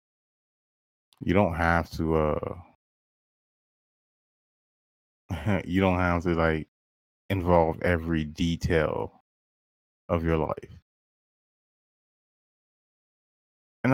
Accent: American